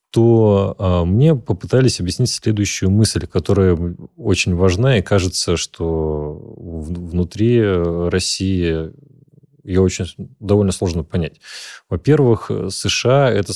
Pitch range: 90-110 Hz